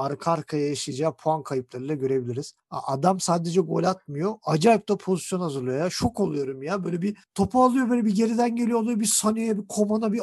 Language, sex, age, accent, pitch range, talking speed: Turkish, male, 50-69, native, 155-205 Hz, 190 wpm